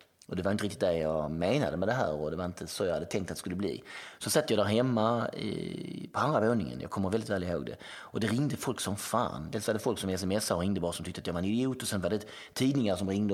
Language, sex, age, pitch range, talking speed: Swedish, male, 30-49, 95-120 Hz, 300 wpm